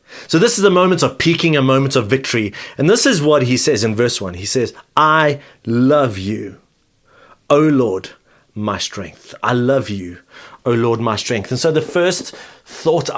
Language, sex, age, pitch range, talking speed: English, male, 30-49, 125-160 Hz, 185 wpm